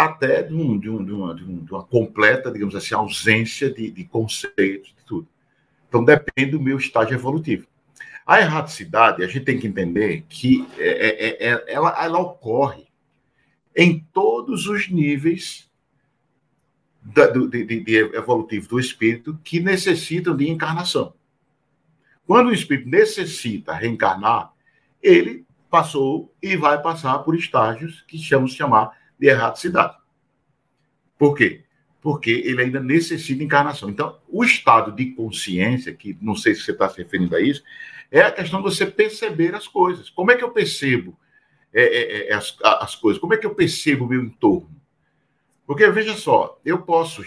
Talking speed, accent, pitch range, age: 145 wpm, Brazilian, 125-180 Hz, 50-69